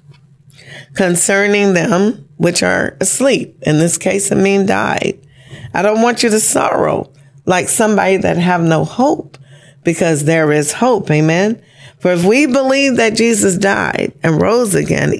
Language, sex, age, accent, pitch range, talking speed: English, female, 40-59, American, 150-205 Hz, 150 wpm